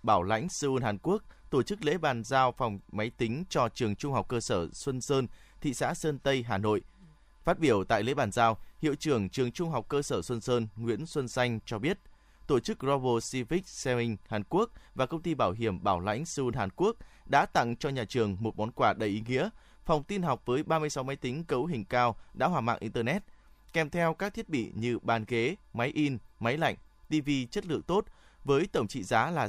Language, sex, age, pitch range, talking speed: Vietnamese, male, 20-39, 115-150 Hz, 225 wpm